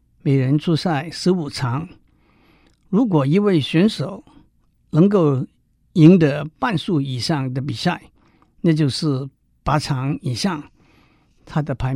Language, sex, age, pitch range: Chinese, male, 60-79, 140-170 Hz